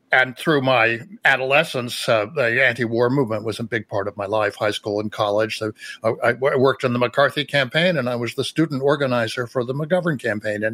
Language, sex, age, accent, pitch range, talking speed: English, male, 60-79, American, 110-135 Hz, 205 wpm